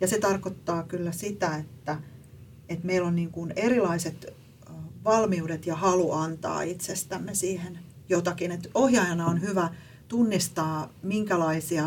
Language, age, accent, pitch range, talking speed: Finnish, 40-59, native, 155-180 Hz, 110 wpm